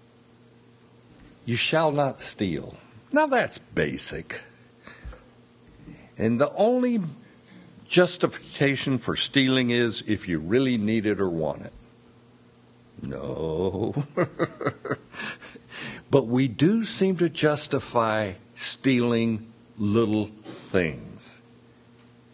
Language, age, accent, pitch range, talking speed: English, 60-79, American, 115-130 Hz, 85 wpm